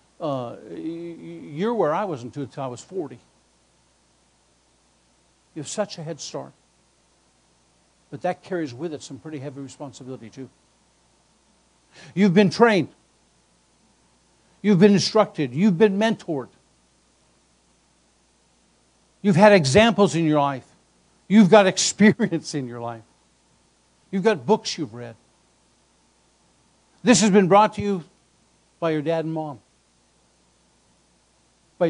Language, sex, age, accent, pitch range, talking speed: English, male, 60-79, American, 130-200 Hz, 120 wpm